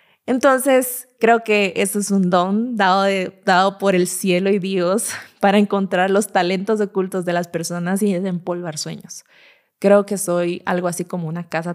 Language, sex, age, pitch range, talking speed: Spanish, female, 20-39, 175-210 Hz, 175 wpm